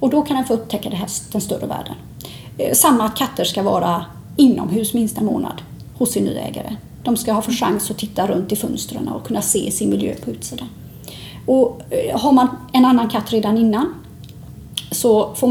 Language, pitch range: Swedish, 210-275 Hz